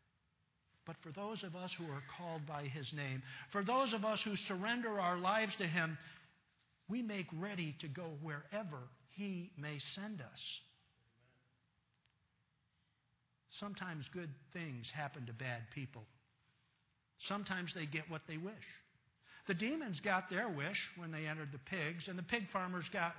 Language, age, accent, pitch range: English, 60-79, American, 140-195 Hz